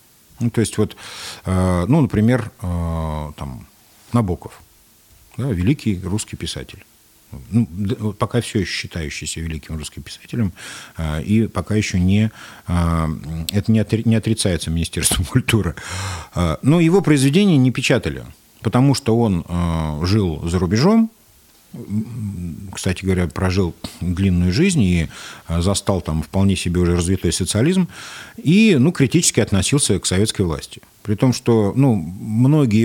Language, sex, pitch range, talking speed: Russian, male, 90-120 Hz, 110 wpm